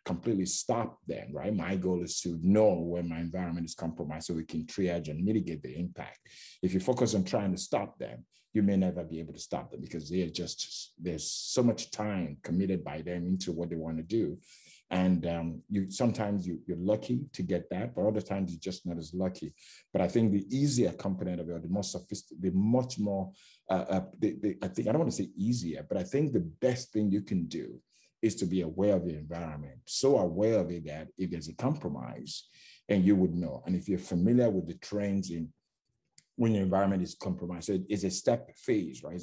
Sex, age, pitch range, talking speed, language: male, 50-69, 85-100 Hz, 225 wpm, English